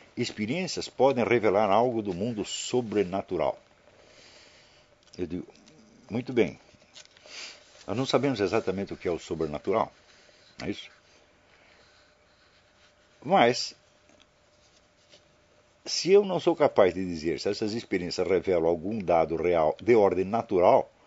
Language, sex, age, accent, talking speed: Portuguese, male, 60-79, Brazilian, 115 wpm